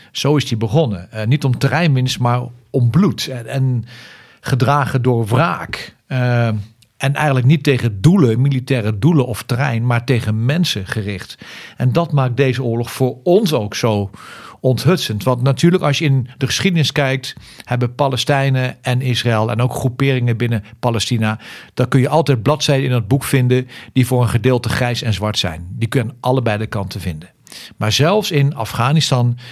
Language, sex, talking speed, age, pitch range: Dutch, male, 175 wpm, 50-69, 115-135 Hz